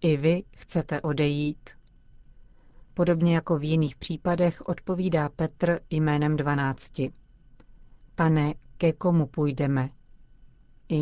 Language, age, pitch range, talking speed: Czech, 40-59, 135-165 Hz, 100 wpm